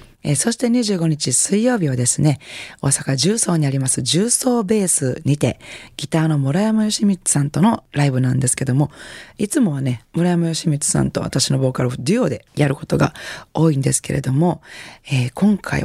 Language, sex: Japanese, female